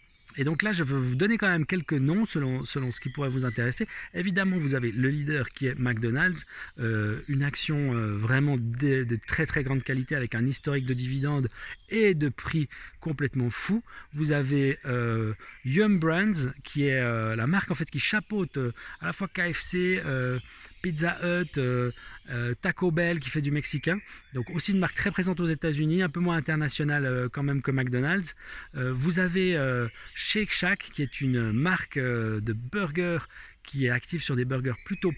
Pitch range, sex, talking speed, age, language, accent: 125-175 Hz, male, 195 wpm, 40-59, French, French